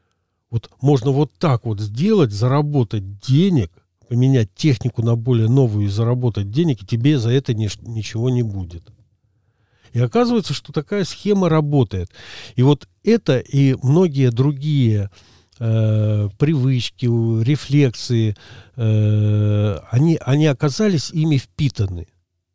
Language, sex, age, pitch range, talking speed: Russian, male, 50-69, 105-135 Hz, 115 wpm